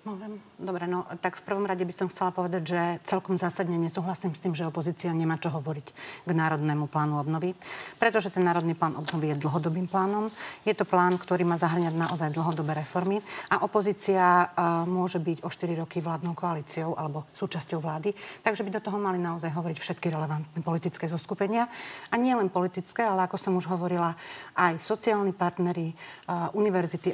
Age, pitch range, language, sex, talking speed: 40-59, 175-210 Hz, Slovak, female, 175 wpm